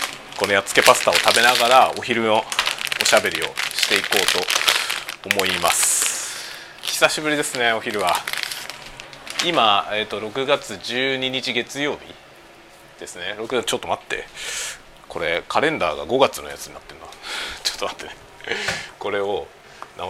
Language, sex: Japanese, male